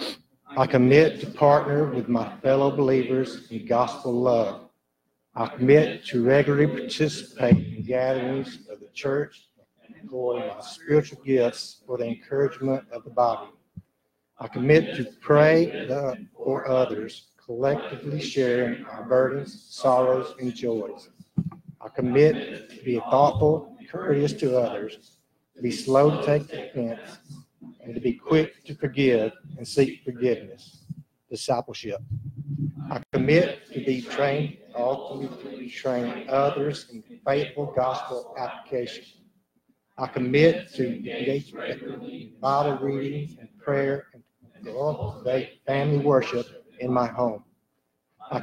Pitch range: 125-145 Hz